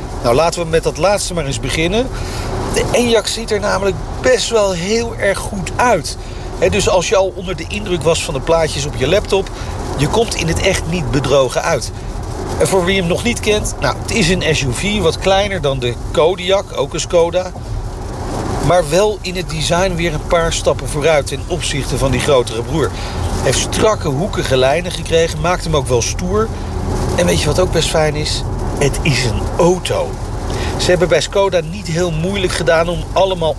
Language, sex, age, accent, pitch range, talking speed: Dutch, male, 40-59, Dutch, 120-180 Hz, 200 wpm